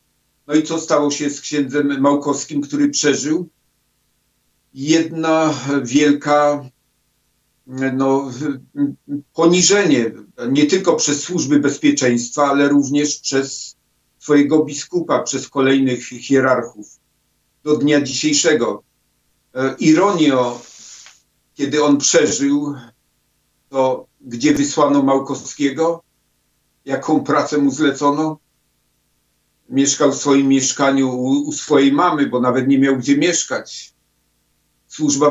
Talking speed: 95 wpm